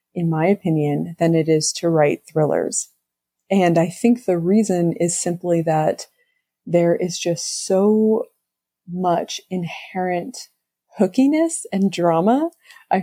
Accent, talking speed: American, 125 wpm